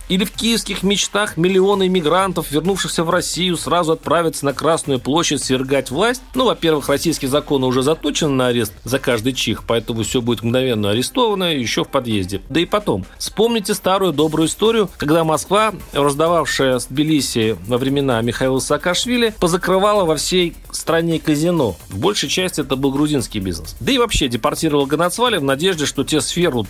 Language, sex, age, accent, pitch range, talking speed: Russian, male, 40-59, native, 130-185 Hz, 165 wpm